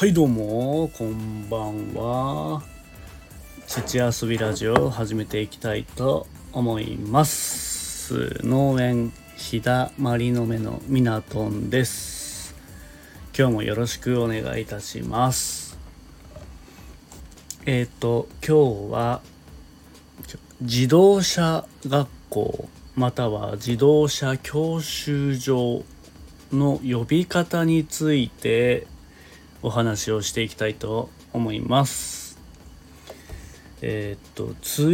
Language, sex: Japanese, male